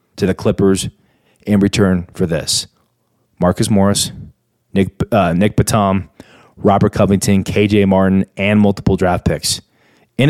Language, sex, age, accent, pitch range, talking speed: English, male, 20-39, American, 95-110 Hz, 130 wpm